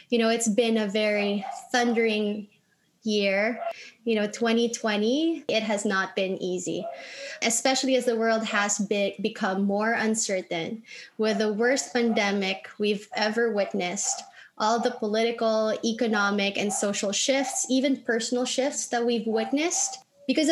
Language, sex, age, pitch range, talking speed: English, female, 20-39, 215-260 Hz, 130 wpm